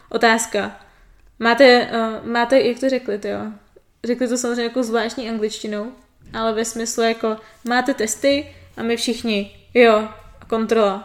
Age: 20-39